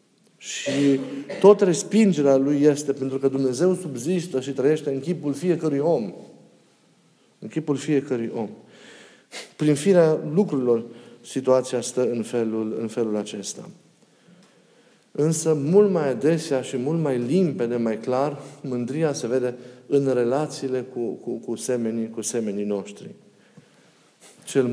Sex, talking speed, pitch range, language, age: male, 125 wpm, 130-175 Hz, Romanian, 50-69